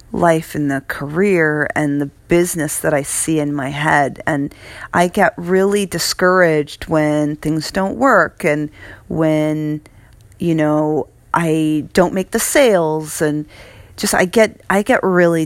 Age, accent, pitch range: 40-59, American, 145-175 Hz